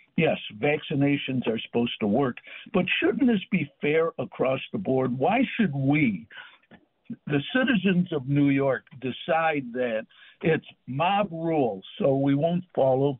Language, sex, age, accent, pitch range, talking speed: English, male, 60-79, American, 135-185 Hz, 140 wpm